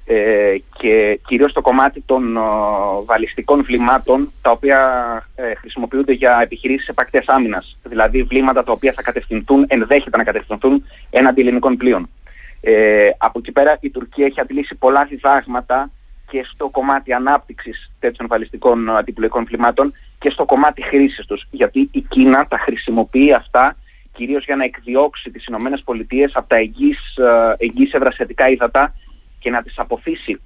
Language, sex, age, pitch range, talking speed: Greek, male, 30-49, 125-145 Hz, 140 wpm